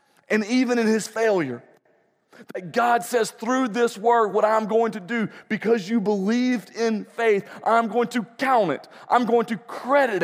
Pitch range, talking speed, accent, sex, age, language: 180-230 Hz, 175 wpm, American, male, 40-59, English